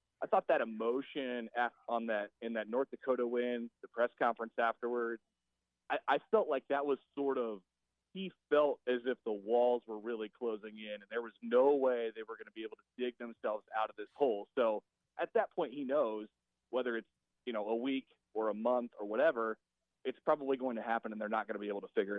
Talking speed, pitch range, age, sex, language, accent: 220 wpm, 110-130 Hz, 30-49, male, English, American